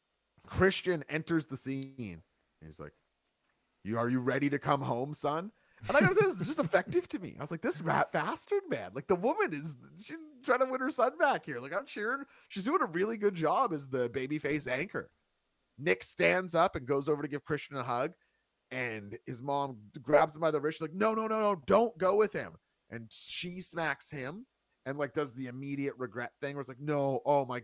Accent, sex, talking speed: American, male, 220 wpm